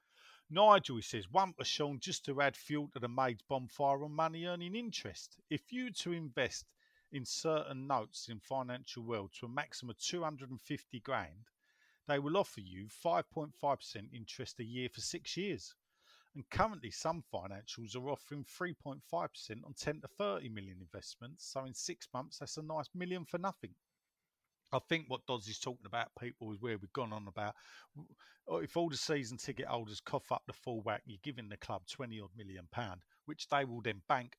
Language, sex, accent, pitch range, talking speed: English, male, British, 110-150 Hz, 185 wpm